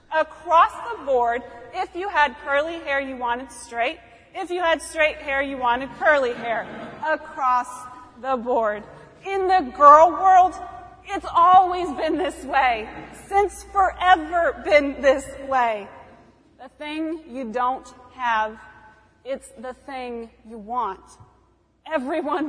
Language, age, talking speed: English, 30-49, 130 wpm